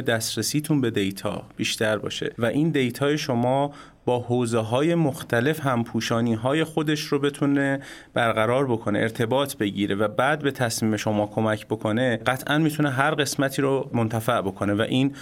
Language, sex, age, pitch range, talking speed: Persian, male, 30-49, 110-145 Hz, 150 wpm